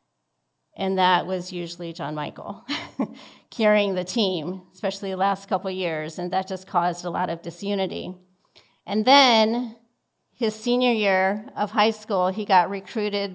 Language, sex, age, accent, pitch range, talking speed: English, female, 40-59, American, 185-220 Hz, 155 wpm